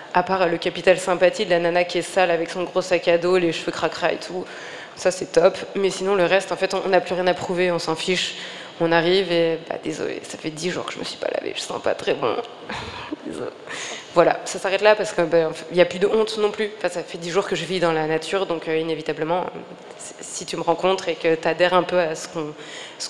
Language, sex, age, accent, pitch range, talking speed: French, female, 20-39, French, 170-195 Hz, 270 wpm